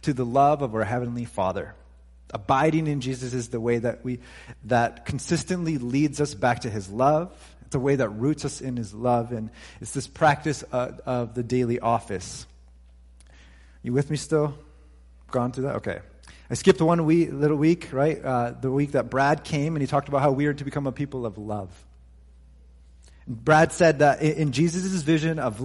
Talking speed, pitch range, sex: 195 wpm, 115-150 Hz, male